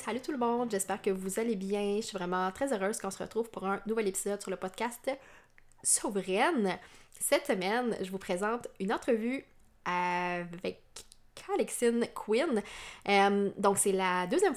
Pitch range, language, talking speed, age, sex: 190-240 Hz, French, 165 wpm, 20-39, female